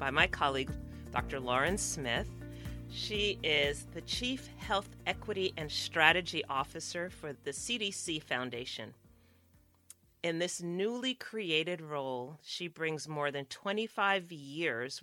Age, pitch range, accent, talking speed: 40-59, 140-185 Hz, American, 120 wpm